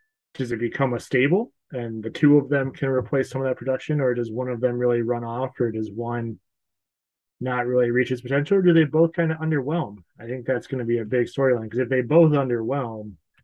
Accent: American